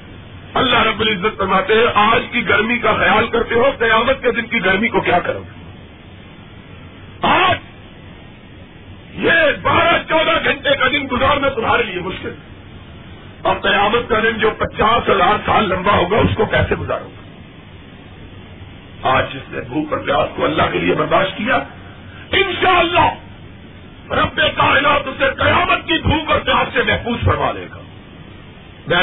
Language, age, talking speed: Urdu, 50-69, 155 wpm